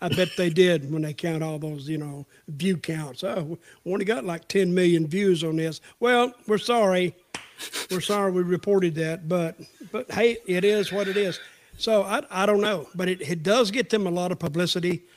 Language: English